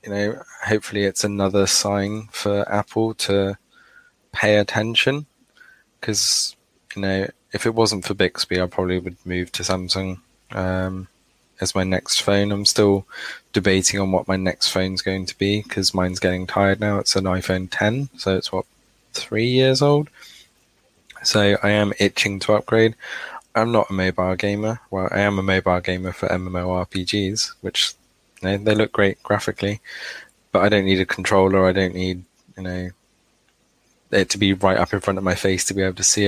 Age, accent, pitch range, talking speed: 20-39, British, 95-105 Hz, 180 wpm